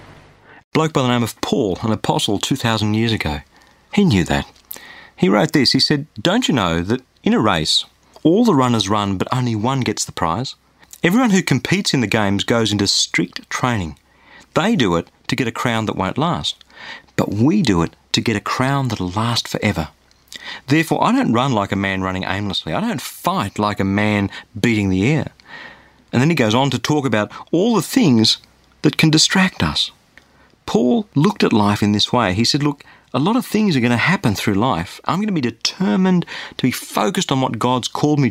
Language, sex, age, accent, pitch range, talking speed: English, male, 40-59, Australian, 105-150 Hz, 210 wpm